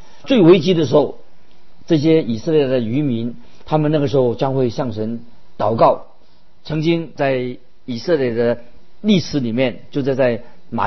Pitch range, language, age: 125-160 Hz, Chinese, 50-69